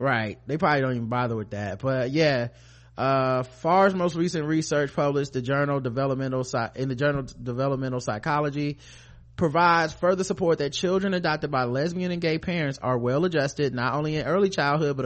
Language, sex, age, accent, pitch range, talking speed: English, male, 30-49, American, 125-155 Hz, 180 wpm